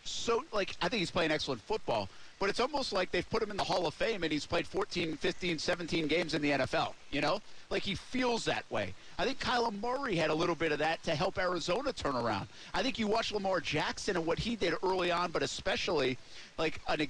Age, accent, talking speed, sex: 50-69, American, 240 wpm, male